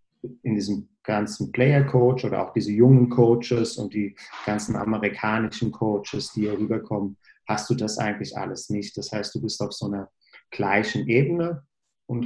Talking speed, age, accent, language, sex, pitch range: 160 wpm, 40-59, German, German, male, 105-120 Hz